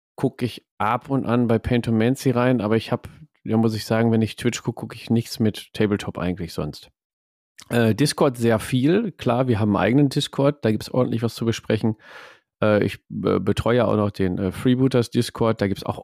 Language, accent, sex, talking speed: German, German, male, 215 wpm